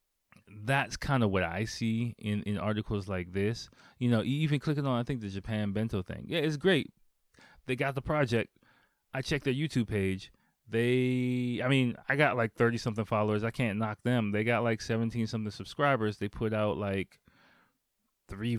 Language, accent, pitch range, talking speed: English, American, 105-125 Hz, 185 wpm